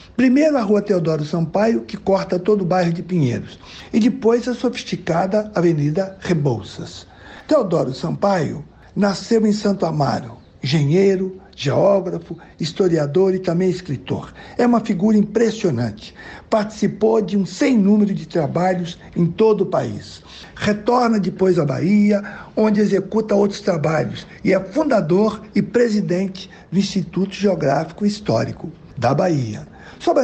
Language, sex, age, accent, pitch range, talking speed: Portuguese, male, 60-79, Brazilian, 160-210 Hz, 130 wpm